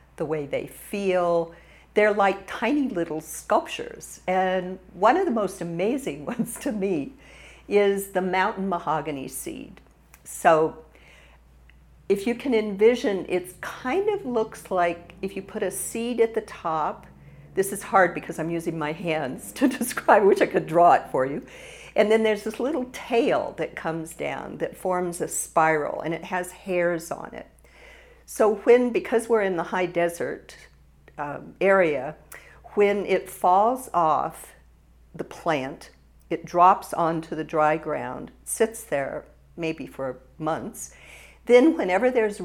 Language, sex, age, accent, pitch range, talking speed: English, female, 50-69, American, 165-225 Hz, 150 wpm